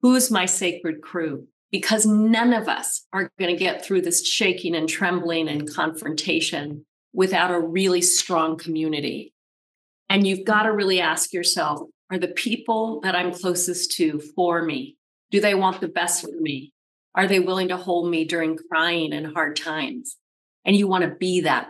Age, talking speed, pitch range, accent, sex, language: 40-59, 180 wpm, 160-195 Hz, American, female, English